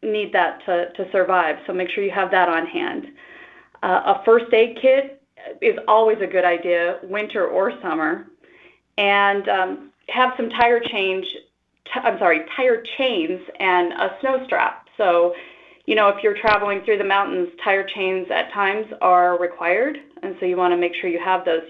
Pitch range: 180-240 Hz